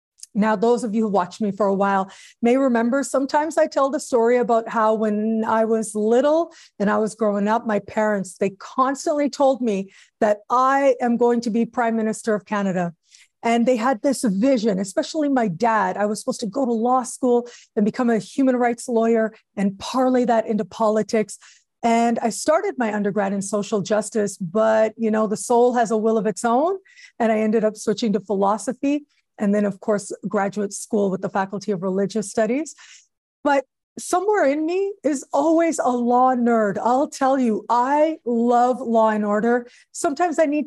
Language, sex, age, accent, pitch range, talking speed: English, female, 40-59, American, 215-265 Hz, 190 wpm